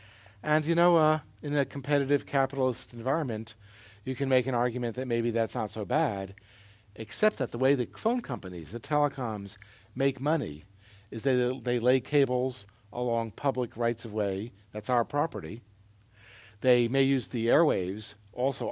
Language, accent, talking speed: English, American, 155 wpm